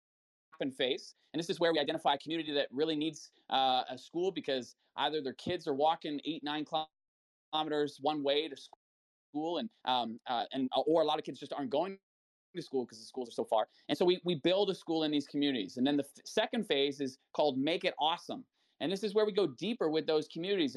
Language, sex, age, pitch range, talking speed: English, male, 20-39, 145-205 Hz, 235 wpm